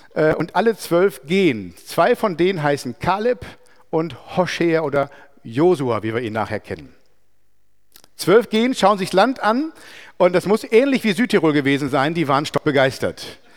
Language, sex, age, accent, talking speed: German, male, 50-69, German, 160 wpm